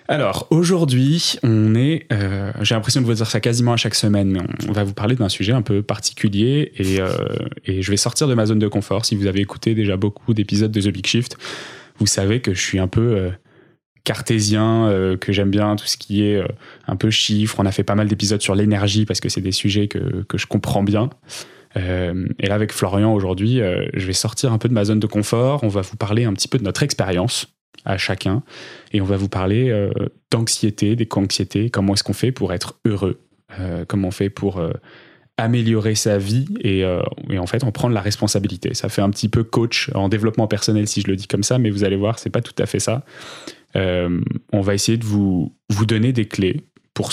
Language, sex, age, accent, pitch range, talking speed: French, male, 20-39, French, 100-115 Hz, 235 wpm